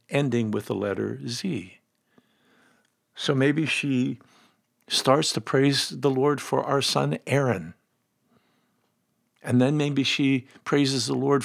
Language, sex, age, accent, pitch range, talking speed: English, male, 50-69, American, 105-135 Hz, 125 wpm